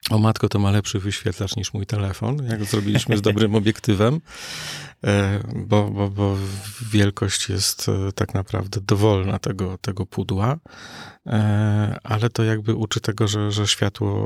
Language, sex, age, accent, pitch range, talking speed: Polish, male, 40-59, native, 105-115 Hz, 140 wpm